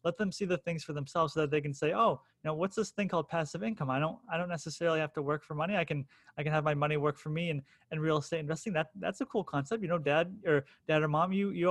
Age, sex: 20-39, male